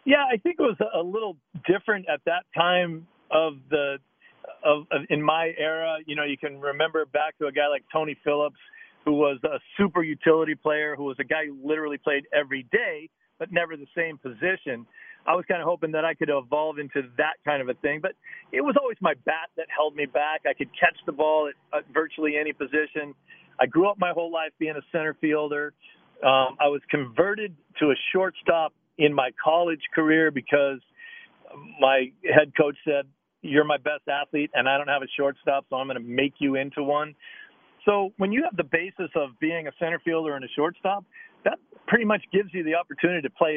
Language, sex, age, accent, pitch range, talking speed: English, male, 40-59, American, 140-170 Hz, 210 wpm